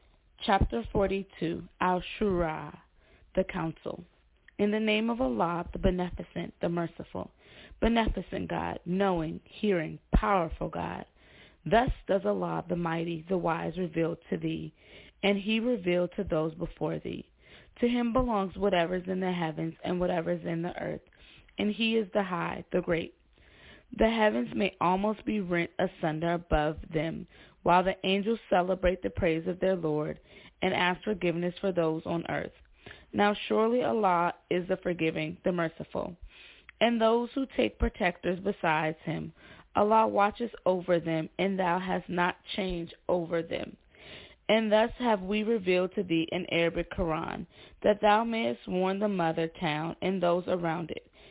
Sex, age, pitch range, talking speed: female, 20-39, 165-205 Hz, 150 wpm